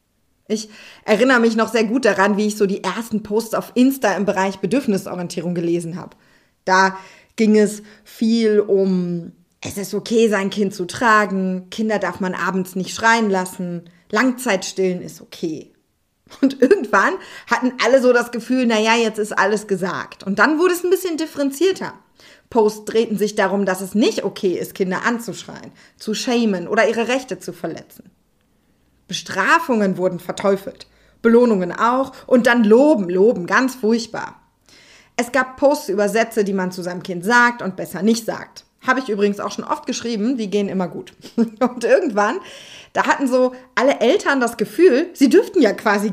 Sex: female